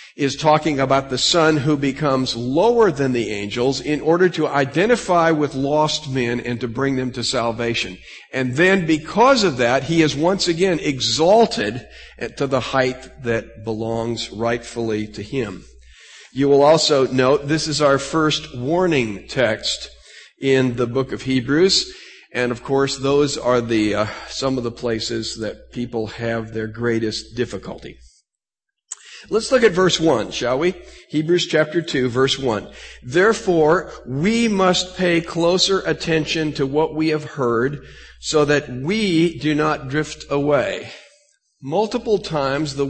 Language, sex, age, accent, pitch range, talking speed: English, male, 50-69, American, 125-160 Hz, 150 wpm